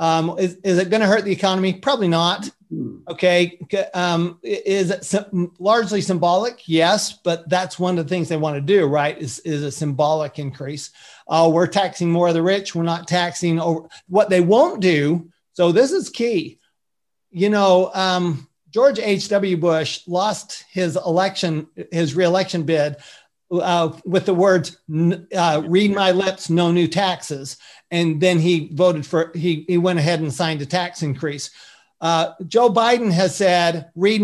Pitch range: 165-195 Hz